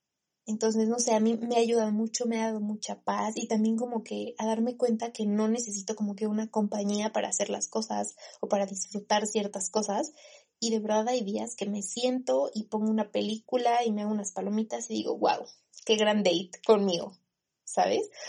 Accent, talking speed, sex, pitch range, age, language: Mexican, 205 wpm, female, 205-235 Hz, 20-39, Spanish